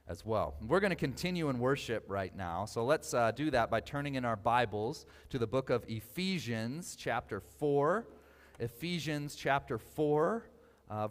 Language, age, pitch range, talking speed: English, 30-49, 115-155 Hz, 165 wpm